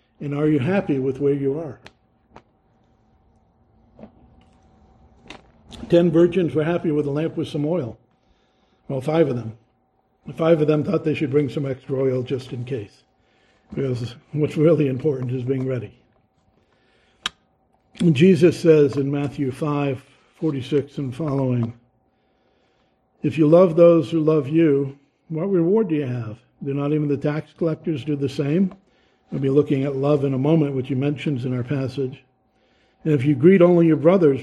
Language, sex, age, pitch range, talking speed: English, male, 60-79, 130-155 Hz, 160 wpm